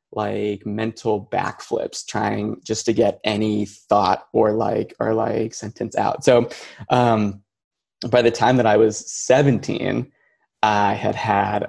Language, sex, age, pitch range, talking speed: English, male, 20-39, 105-120 Hz, 140 wpm